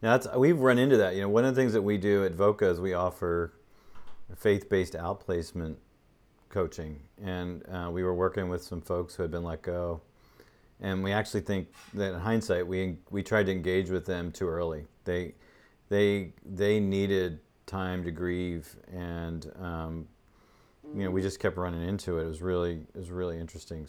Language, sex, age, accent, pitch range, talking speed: English, male, 40-59, American, 90-105 Hz, 190 wpm